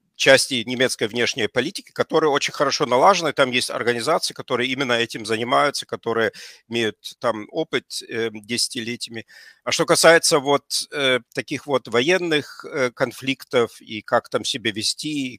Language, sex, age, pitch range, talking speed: Ukrainian, male, 50-69, 110-135 Hz, 145 wpm